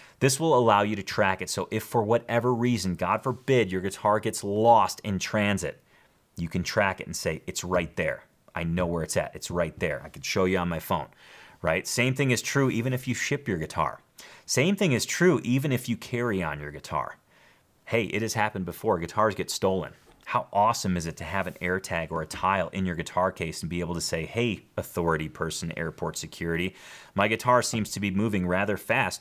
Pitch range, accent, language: 95-130 Hz, American, English